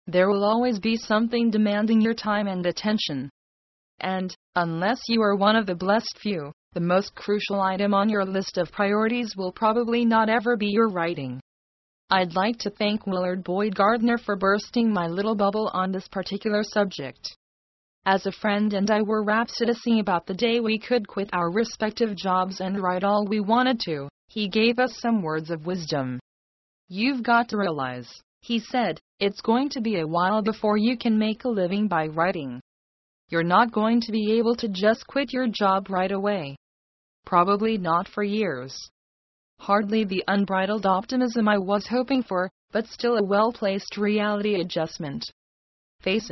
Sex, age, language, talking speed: female, 30-49, English, 170 wpm